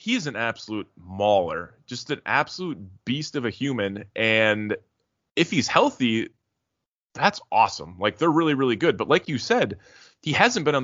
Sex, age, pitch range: male, 20-39, 110-135 Hz